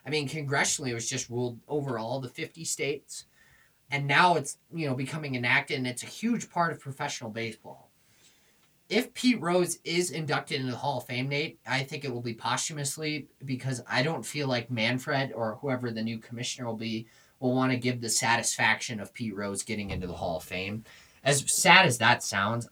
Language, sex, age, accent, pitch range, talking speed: English, male, 20-39, American, 100-135 Hz, 205 wpm